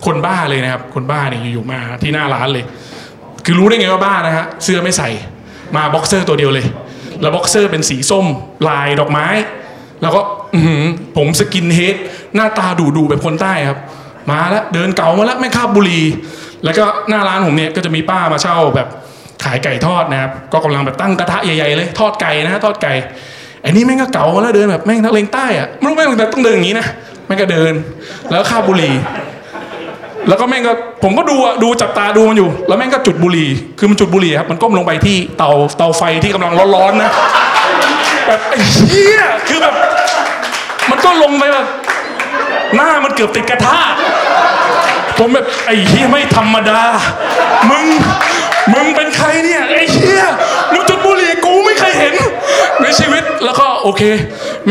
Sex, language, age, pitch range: male, Thai, 20-39, 155-220 Hz